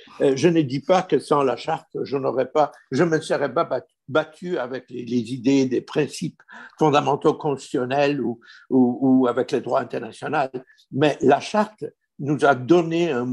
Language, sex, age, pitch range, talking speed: French, male, 60-79, 135-185 Hz, 160 wpm